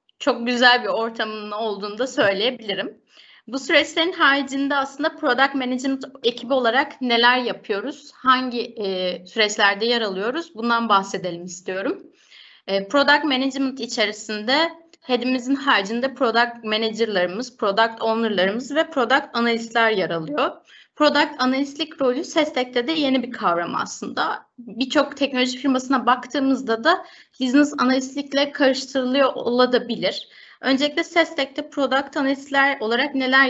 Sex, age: female, 30-49